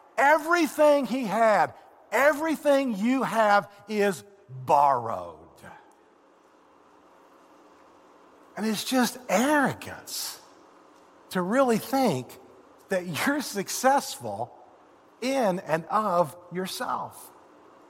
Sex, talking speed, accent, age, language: male, 75 wpm, American, 50-69, English